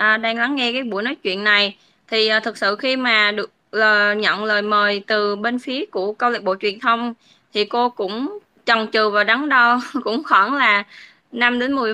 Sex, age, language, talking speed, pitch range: female, 20-39, Vietnamese, 215 wpm, 205-245 Hz